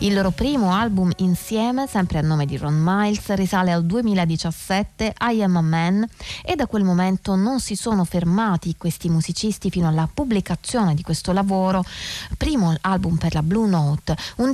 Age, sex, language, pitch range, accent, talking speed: 20-39, female, Italian, 165-215 Hz, native, 170 wpm